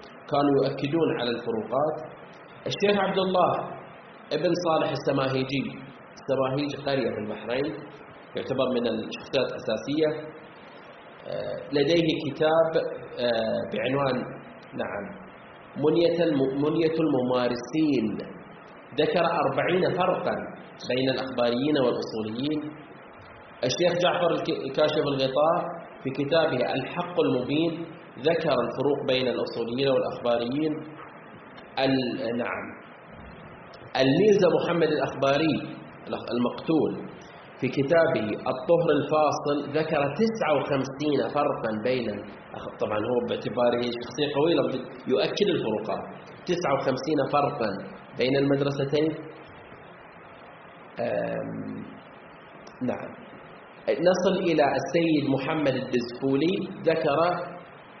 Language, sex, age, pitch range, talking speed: Arabic, male, 30-49, 130-165 Hz, 80 wpm